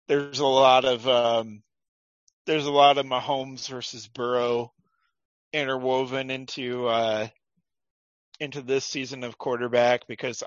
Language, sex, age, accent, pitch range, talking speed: English, male, 40-59, American, 110-135 Hz, 120 wpm